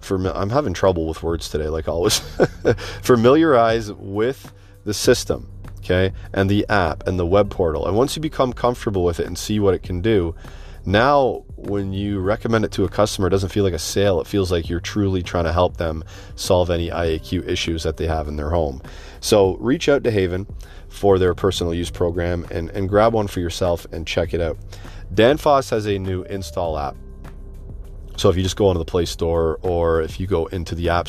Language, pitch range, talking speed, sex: English, 85-100 Hz, 210 wpm, male